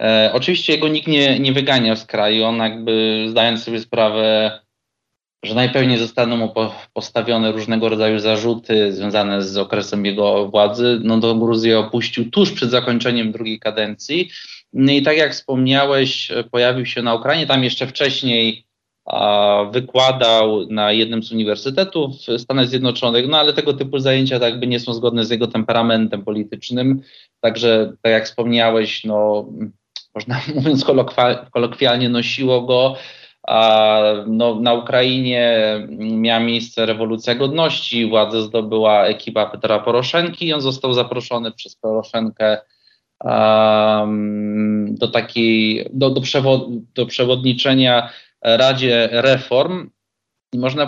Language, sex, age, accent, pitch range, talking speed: Polish, male, 20-39, native, 110-130 Hz, 130 wpm